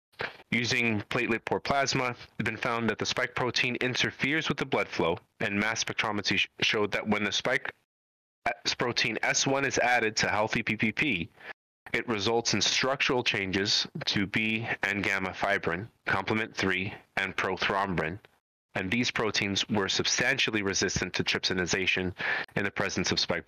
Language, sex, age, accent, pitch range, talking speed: English, male, 30-49, American, 100-120 Hz, 150 wpm